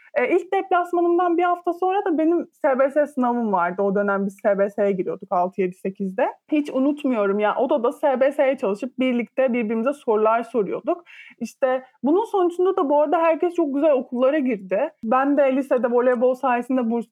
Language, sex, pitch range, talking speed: Turkish, male, 215-285 Hz, 165 wpm